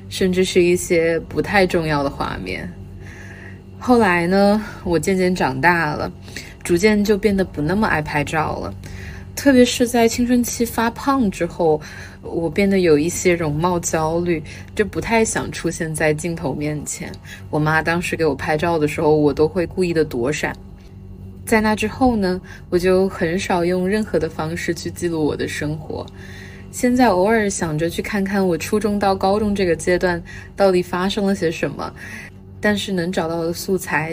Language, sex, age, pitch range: Chinese, female, 20-39, 145-190 Hz